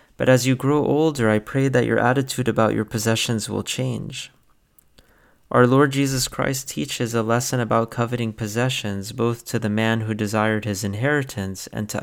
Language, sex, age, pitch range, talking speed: English, male, 30-49, 105-125 Hz, 175 wpm